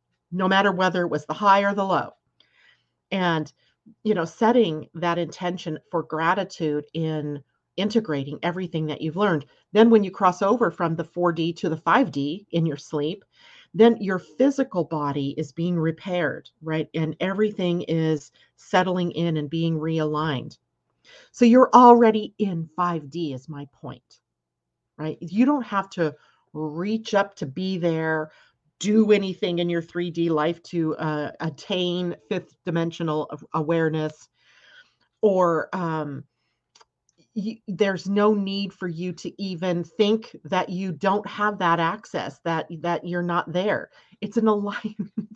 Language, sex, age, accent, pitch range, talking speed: English, female, 40-59, American, 160-205 Hz, 145 wpm